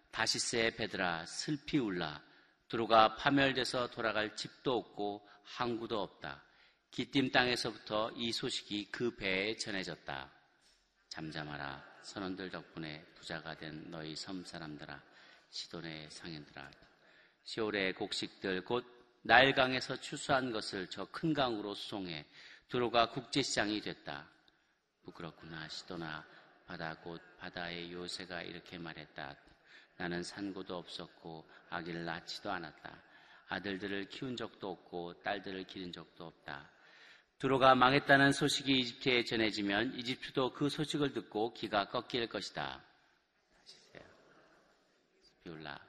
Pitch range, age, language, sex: 85-125 Hz, 40-59, Korean, male